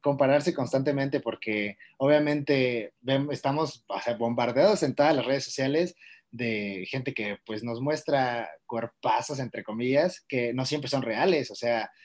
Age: 30-49